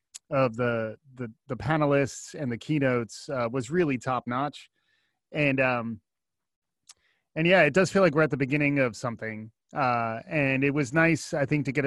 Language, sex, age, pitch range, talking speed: English, male, 30-49, 125-155 Hz, 175 wpm